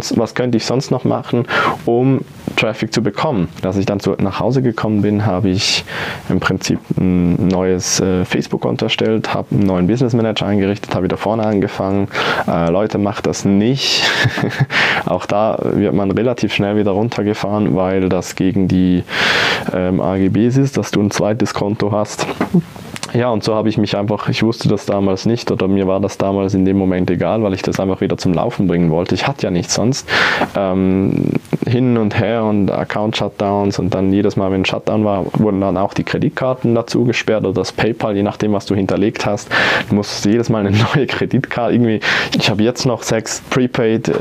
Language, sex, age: German, male, 20-39